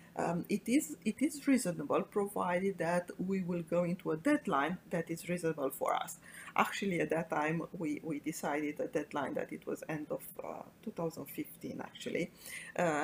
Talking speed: 175 wpm